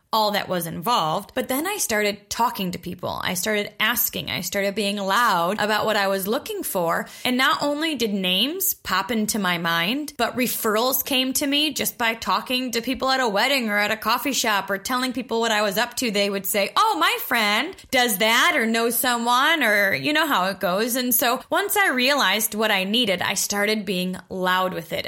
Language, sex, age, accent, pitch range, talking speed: English, female, 20-39, American, 195-260 Hz, 215 wpm